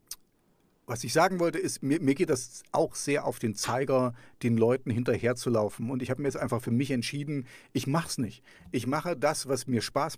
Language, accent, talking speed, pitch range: English, German, 210 wpm, 120-145 Hz